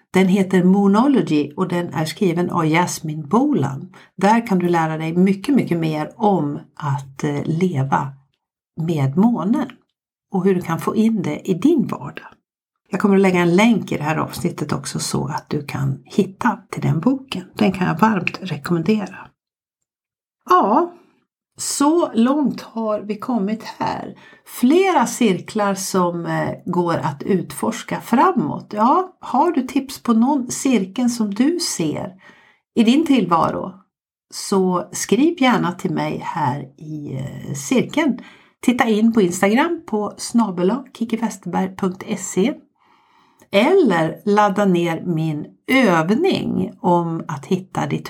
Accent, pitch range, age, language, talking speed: native, 170-235 Hz, 60-79, Swedish, 130 wpm